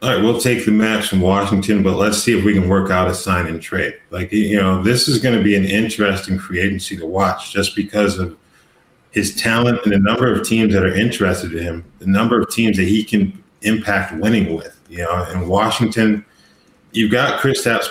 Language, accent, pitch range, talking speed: English, American, 95-105 Hz, 225 wpm